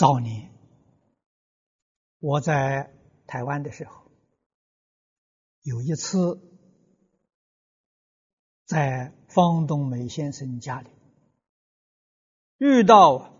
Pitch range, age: 135-185 Hz, 60-79